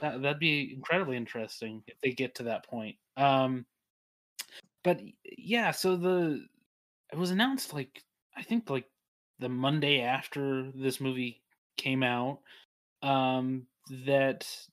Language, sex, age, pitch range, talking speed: English, male, 20-39, 130-155 Hz, 125 wpm